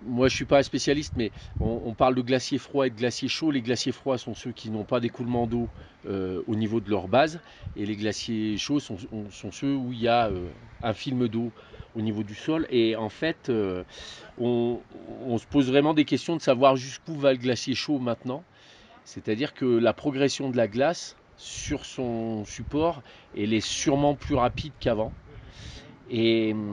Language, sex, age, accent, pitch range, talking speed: French, male, 40-59, French, 105-130 Hz, 200 wpm